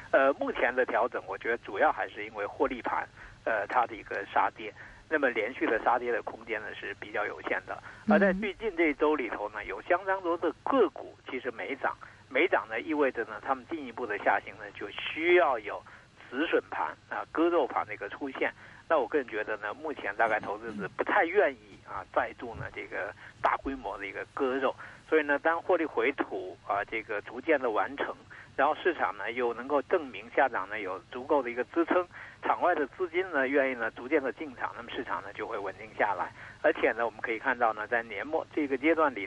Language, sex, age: Chinese, male, 50-69